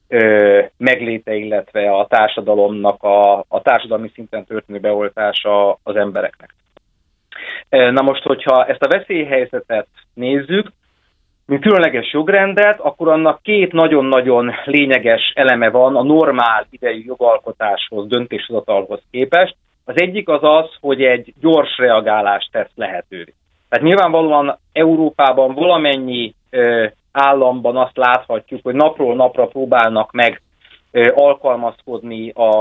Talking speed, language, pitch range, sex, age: 110 wpm, Hungarian, 110-150 Hz, male, 30-49